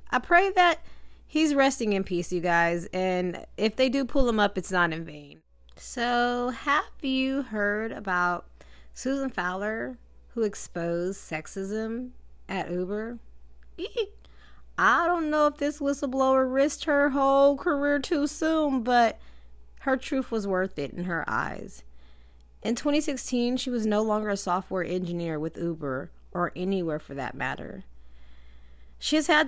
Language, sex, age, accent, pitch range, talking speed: English, female, 30-49, American, 170-265 Hz, 145 wpm